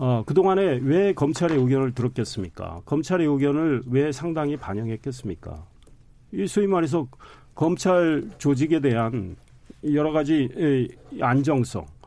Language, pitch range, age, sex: Korean, 115-170 Hz, 40-59, male